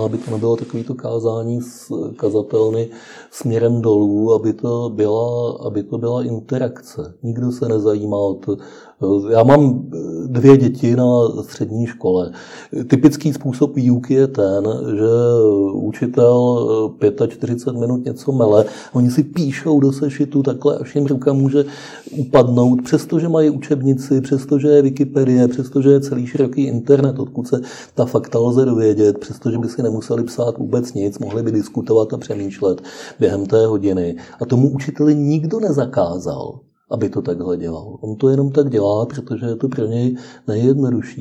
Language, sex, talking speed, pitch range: Czech, male, 150 wpm, 110-135 Hz